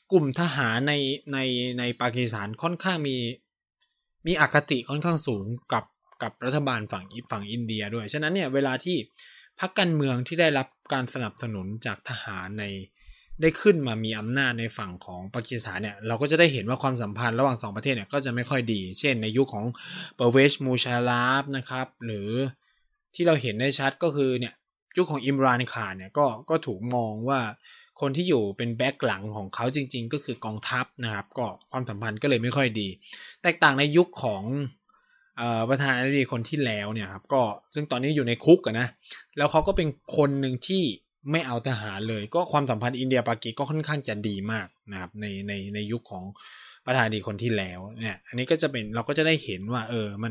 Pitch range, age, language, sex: 110-145 Hz, 20-39, Thai, male